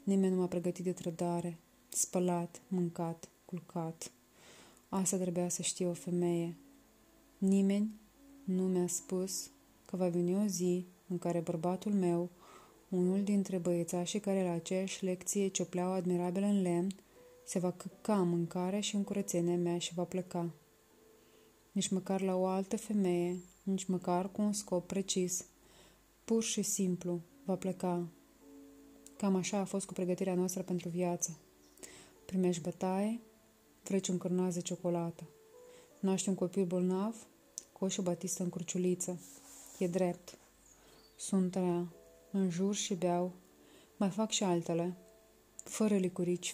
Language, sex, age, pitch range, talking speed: English, female, 20-39, 175-195 Hz, 135 wpm